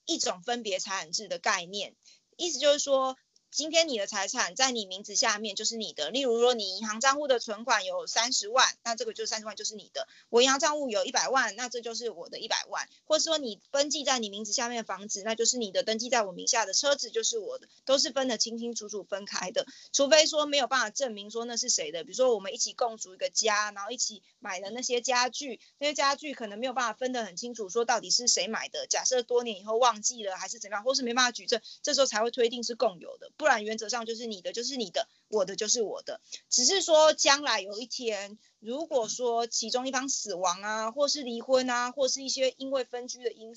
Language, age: Chinese, 20-39